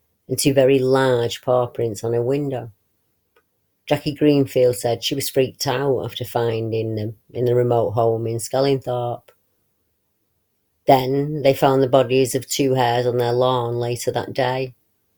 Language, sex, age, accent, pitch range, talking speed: English, female, 30-49, British, 115-135 Hz, 155 wpm